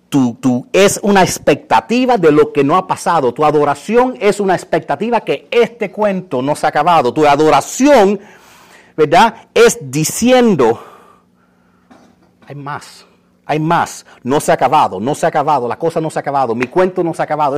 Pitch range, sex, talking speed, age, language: 125-180 Hz, male, 180 wpm, 40-59, Spanish